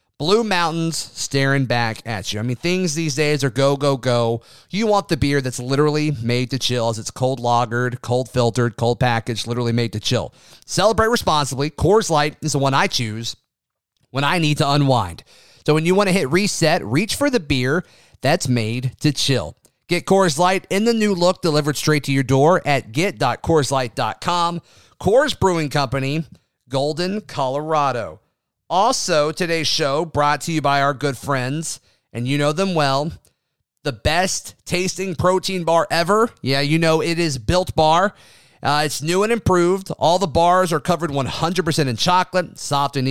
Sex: male